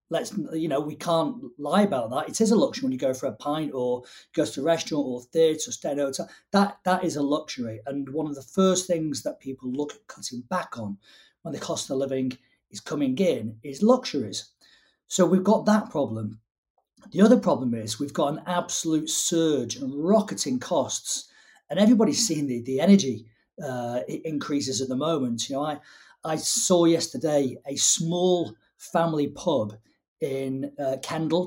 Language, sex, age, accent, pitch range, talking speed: English, male, 40-59, British, 130-185 Hz, 185 wpm